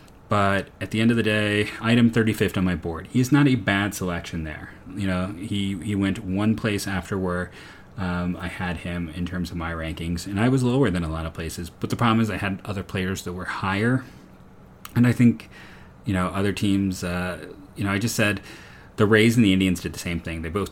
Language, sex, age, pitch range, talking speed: English, male, 30-49, 90-105 Hz, 230 wpm